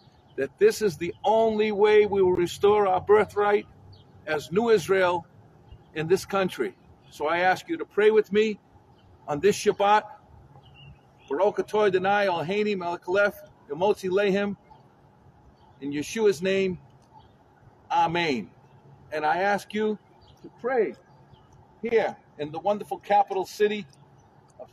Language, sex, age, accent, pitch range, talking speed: English, male, 50-69, American, 175-215 Hz, 125 wpm